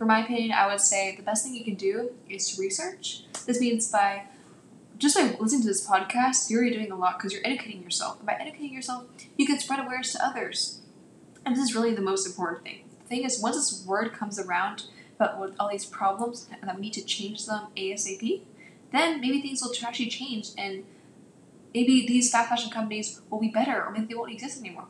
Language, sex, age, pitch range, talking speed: English, female, 10-29, 200-245 Hz, 220 wpm